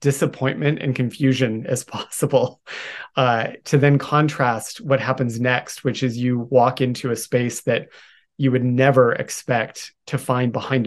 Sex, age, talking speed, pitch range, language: male, 30-49, 150 wpm, 120-135 Hz, English